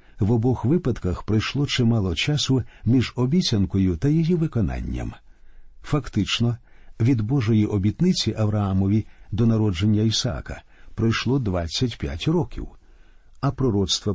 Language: Ukrainian